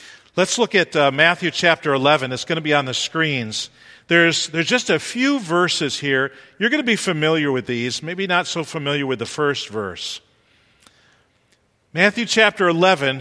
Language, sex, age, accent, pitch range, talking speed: English, male, 50-69, American, 140-190 Hz, 175 wpm